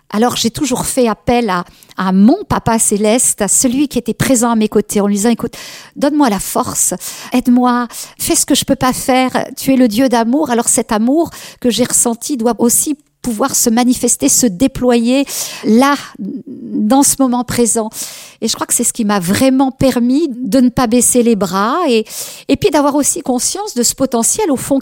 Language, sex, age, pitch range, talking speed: French, female, 50-69, 225-275 Hz, 200 wpm